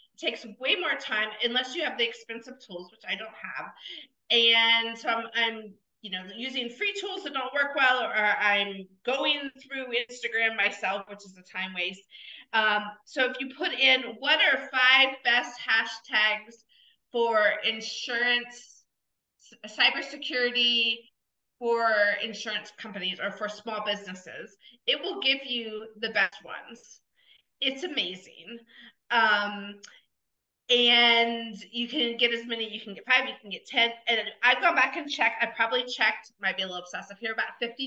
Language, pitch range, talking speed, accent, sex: English, 215-260 Hz, 160 wpm, American, female